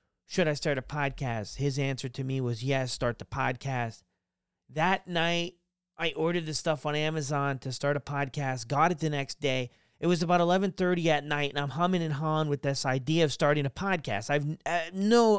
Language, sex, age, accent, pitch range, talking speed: English, male, 30-49, American, 130-175 Hz, 205 wpm